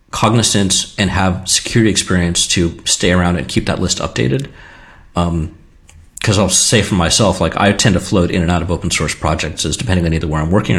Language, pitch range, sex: English, 80-100 Hz, male